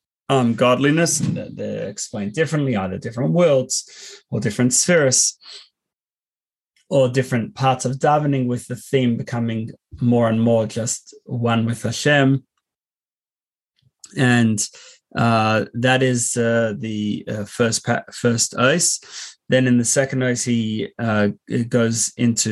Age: 30-49